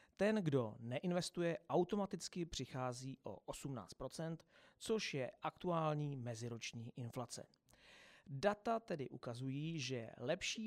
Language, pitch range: Czech, 125-165 Hz